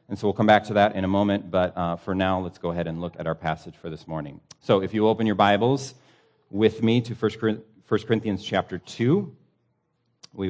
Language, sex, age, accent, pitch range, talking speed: English, male, 40-59, American, 90-130 Hz, 225 wpm